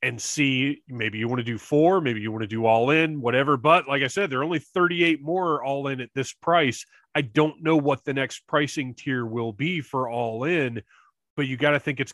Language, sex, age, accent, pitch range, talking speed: English, male, 30-49, American, 120-170 Hz, 235 wpm